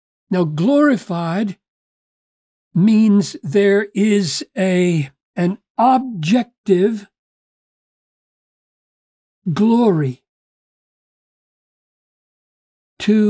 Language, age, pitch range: English, 50-69, 175-235 Hz